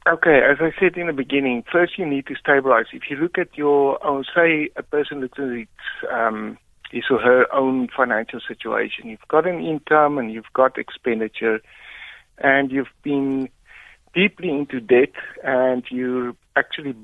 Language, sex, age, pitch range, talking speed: English, male, 60-79, 125-155 Hz, 165 wpm